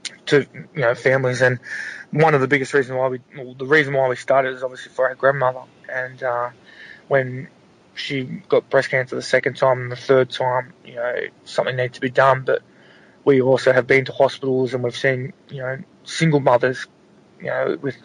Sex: male